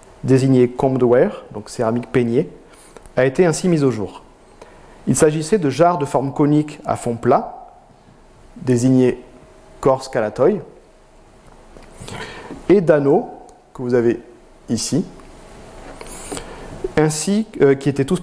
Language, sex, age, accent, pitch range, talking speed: French, male, 40-59, French, 125-165 Hz, 115 wpm